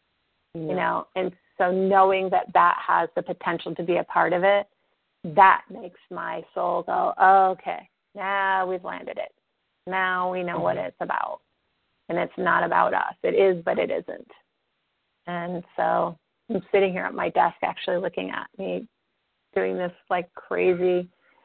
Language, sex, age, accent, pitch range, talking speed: English, female, 30-49, American, 175-205 Hz, 160 wpm